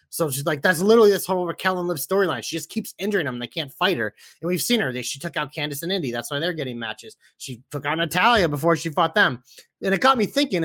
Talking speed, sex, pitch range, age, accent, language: 280 wpm, male, 145-195 Hz, 30-49, American, English